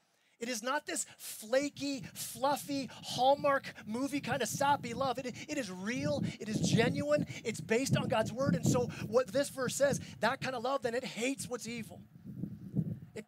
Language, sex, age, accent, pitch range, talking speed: English, male, 30-49, American, 215-270 Hz, 180 wpm